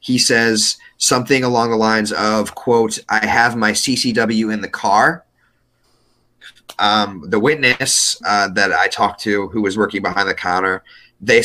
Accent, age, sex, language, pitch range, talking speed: American, 30-49, male, English, 105-120 Hz, 155 wpm